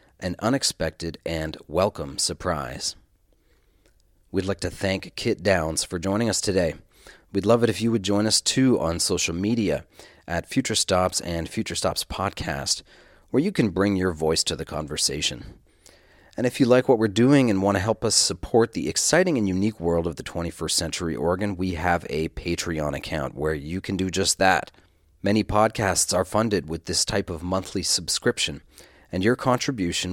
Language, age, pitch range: English, 40-59, 80-105 Hz